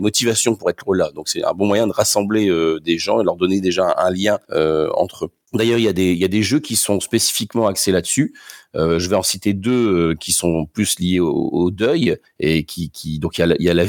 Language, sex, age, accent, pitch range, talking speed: French, male, 40-59, French, 85-100 Hz, 265 wpm